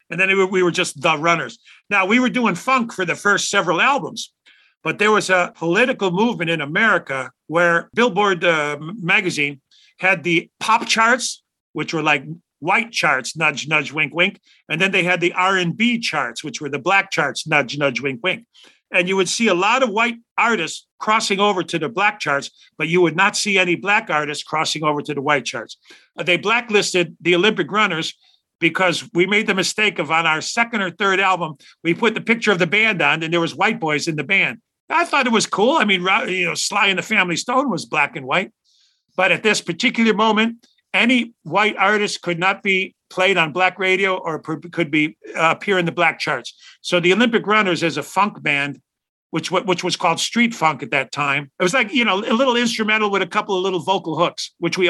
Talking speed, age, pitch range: 215 wpm, 50-69, 160-210 Hz